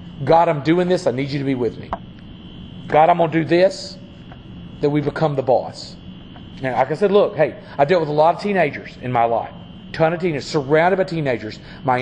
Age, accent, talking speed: 40-59, American, 220 wpm